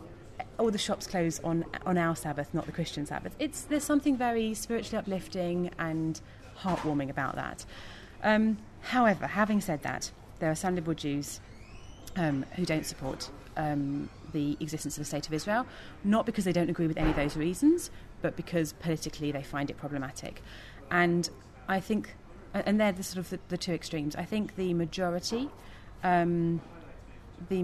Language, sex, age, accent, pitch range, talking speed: English, female, 30-49, British, 145-180 Hz, 170 wpm